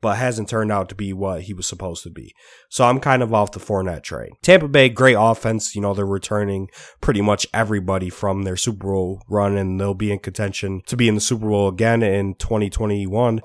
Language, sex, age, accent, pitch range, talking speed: English, male, 20-39, American, 100-120 Hz, 225 wpm